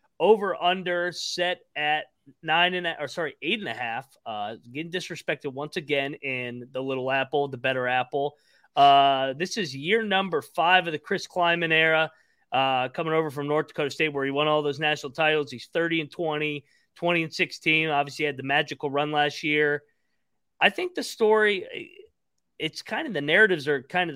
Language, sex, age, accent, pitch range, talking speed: English, male, 30-49, American, 140-175 Hz, 190 wpm